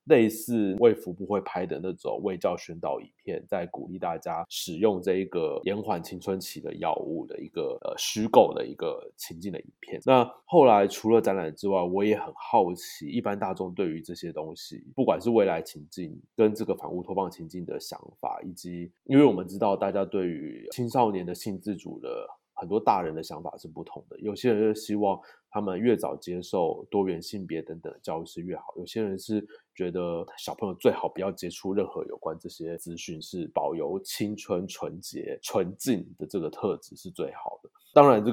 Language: Chinese